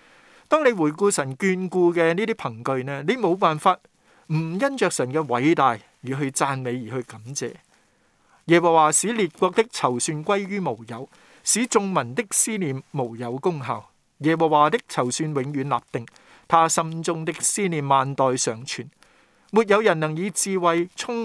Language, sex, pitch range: Chinese, male, 135-185 Hz